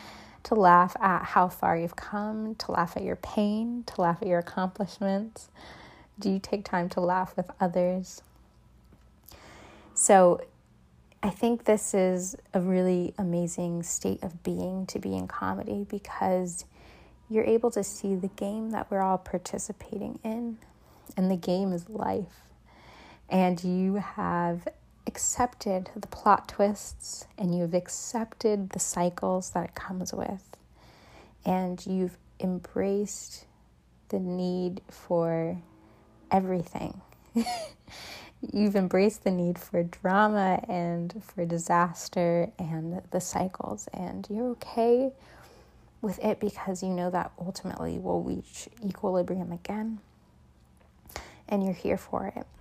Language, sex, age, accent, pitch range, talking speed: English, female, 30-49, American, 175-210 Hz, 125 wpm